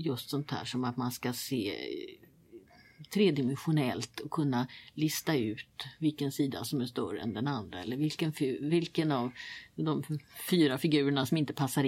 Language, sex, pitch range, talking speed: Swedish, female, 145-195 Hz, 155 wpm